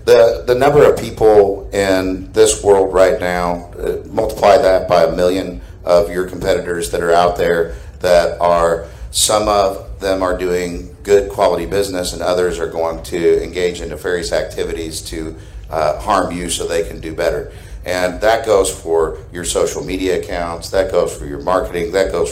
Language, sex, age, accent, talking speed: English, male, 50-69, American, 175 wpm